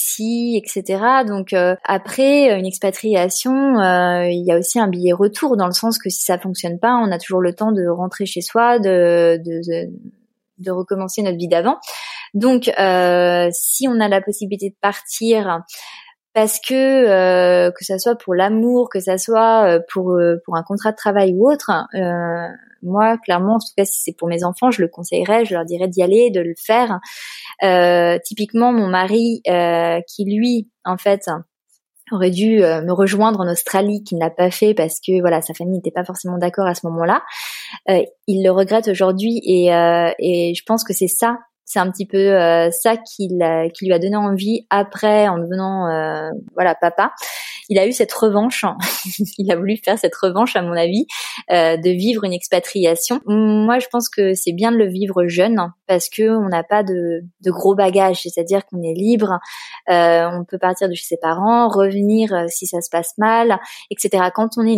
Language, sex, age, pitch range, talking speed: French, female, 20-39, 175-220 Hz, 200 wpm